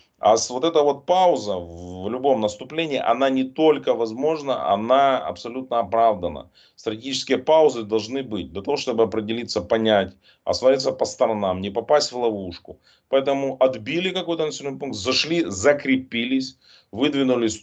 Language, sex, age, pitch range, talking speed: Russian, male, 30-49, 100-135 Hz, 135 wpm